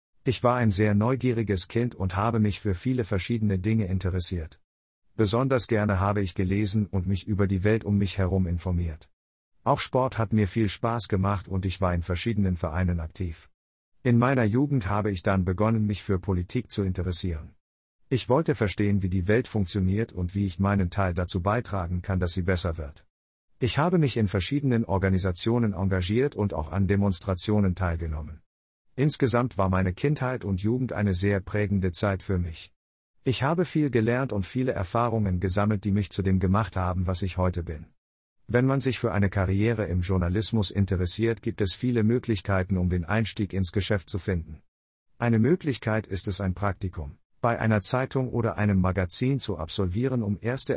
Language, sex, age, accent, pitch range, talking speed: German, male, 50-69, German, 95-115 Hz, 180 wpm